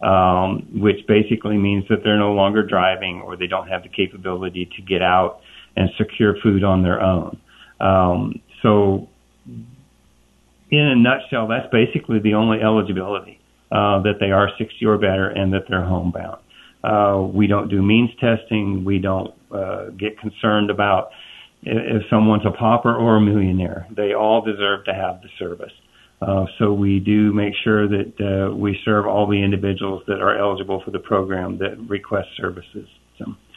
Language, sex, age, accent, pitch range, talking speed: English, male, 50-69, American, 95-110 Hz, 170 wpm